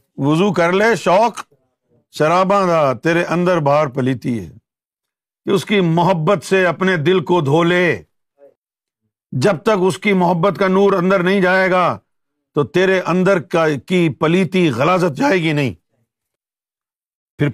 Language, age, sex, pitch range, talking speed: Urdu, 50-69, male, 160-230 Hz, 145 wpm